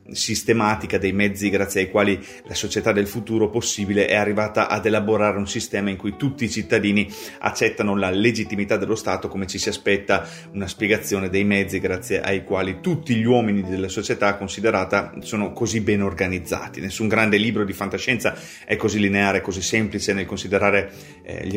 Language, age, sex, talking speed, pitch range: Italian, 30-49, male, 170 wpm, 95-110 Hz